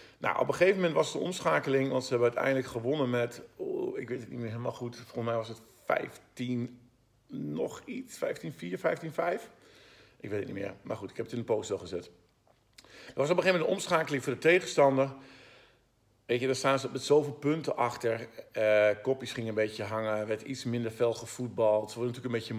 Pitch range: 115-150 Hz